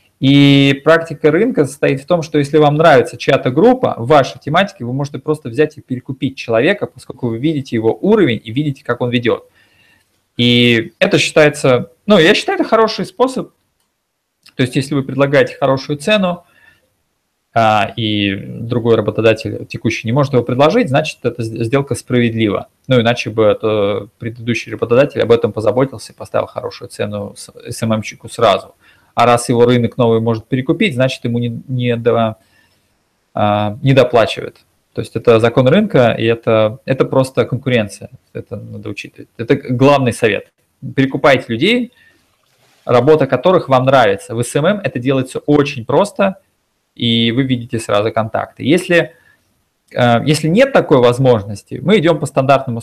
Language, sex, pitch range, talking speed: Russian, male, 115-150 Hz, 150 wpm